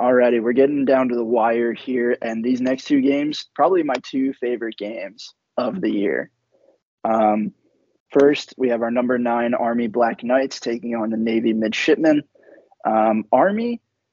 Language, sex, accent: English, male, American